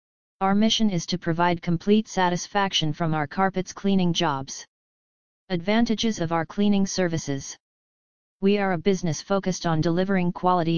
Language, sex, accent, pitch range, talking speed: English, female, American, 165-195 Hz, 140 wpm